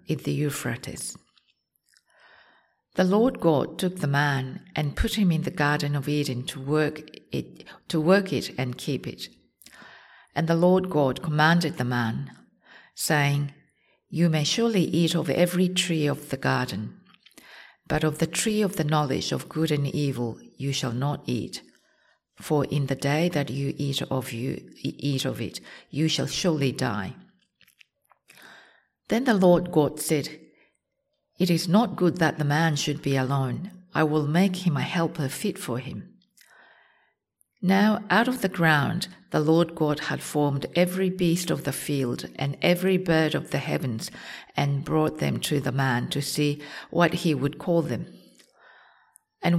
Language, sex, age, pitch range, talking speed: English, female, 50-69, 140-180 Hz, 160 wpm